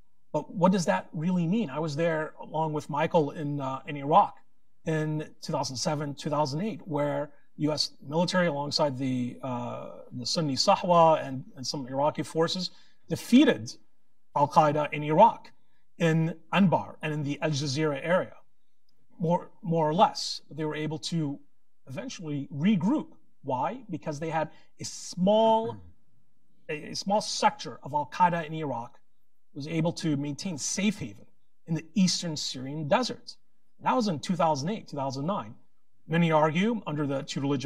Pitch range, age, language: 140-185 Hz, 40-59, English